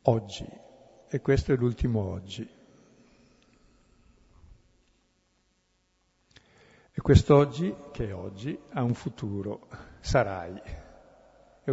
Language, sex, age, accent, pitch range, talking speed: Italian, male, 60-79, native, 115-140 Hz, 80 wpm